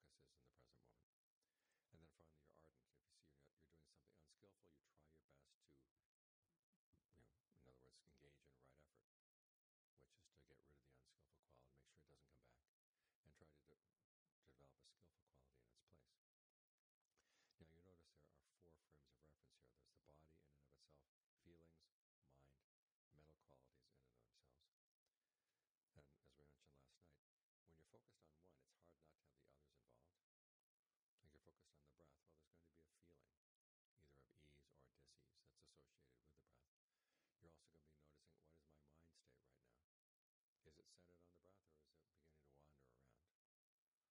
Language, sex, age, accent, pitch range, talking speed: English, male, 60-79, American, 70-80 Hz, 190 wpm